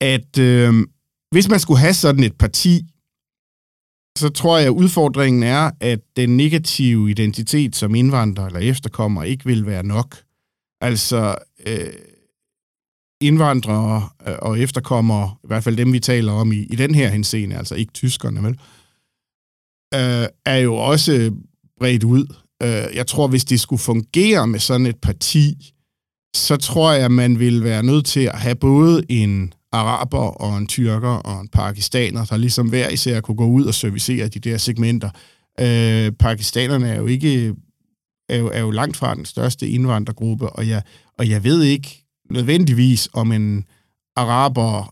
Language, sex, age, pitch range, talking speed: Danish, male, 50-69, 110-135 Hz, 160 wpm